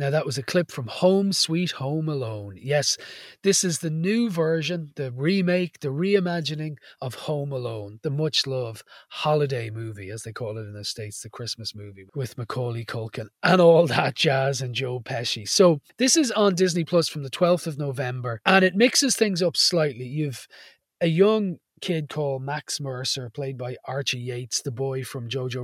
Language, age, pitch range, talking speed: English, 30-49, 125-175 Hz, 185 wpm